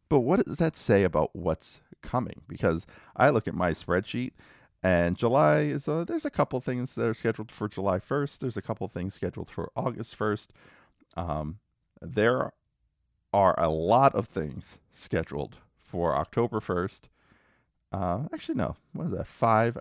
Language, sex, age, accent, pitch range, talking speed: English, male, 40-59, American, 85-110 Hz, 165 wpm